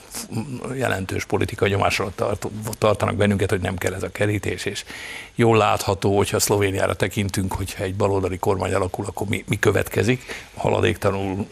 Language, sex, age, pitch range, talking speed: Hungarian, male, 60-79, 100-115 Hz, 140 wpm